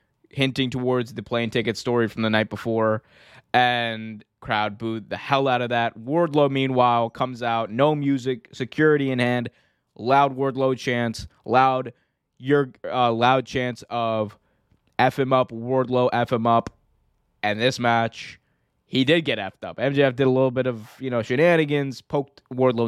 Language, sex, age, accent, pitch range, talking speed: English, male, 20-39, American, 115-135 Hz, 165 wpm